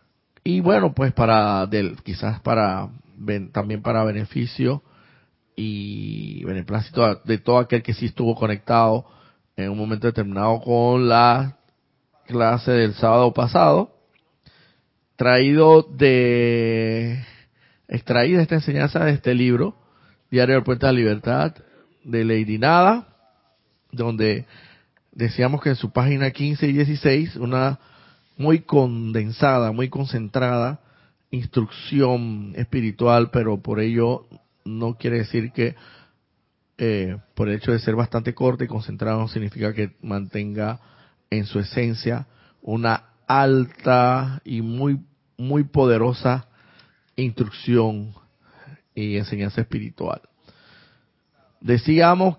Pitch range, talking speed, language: 110-135 Hz, 110 wpm, Spanish